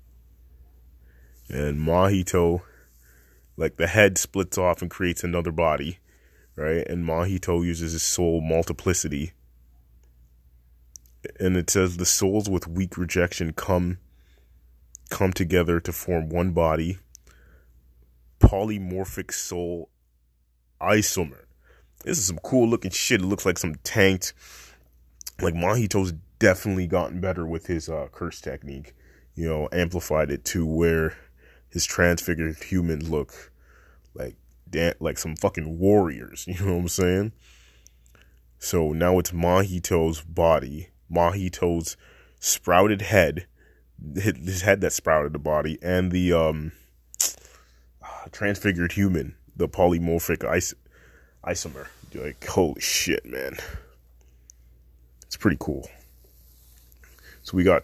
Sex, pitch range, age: male, 65-90 Hz, 30-49